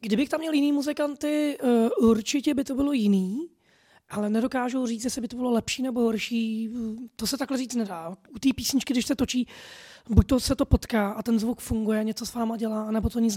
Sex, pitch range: female, 225-255 Hz